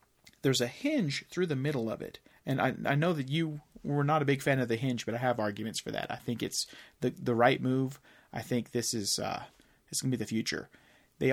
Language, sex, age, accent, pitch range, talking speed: English, male, 30-49, American, 120-145 Hz, 250 wpm